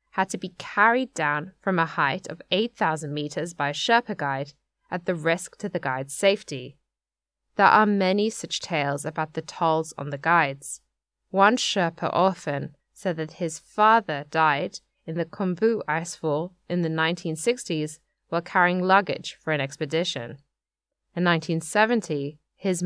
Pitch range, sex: 150-185 Hz, female